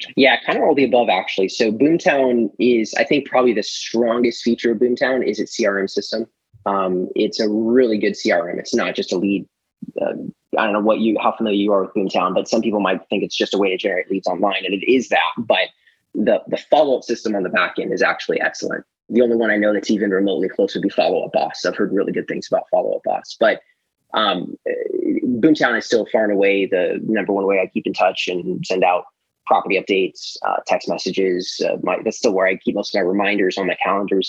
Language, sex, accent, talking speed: English, male, American, 235 wpm